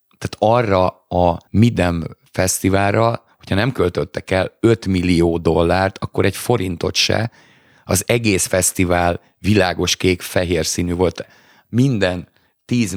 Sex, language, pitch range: male, Hungarian, 90-105 Hz